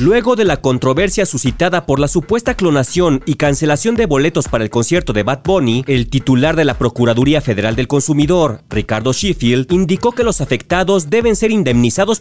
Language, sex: Spanish, male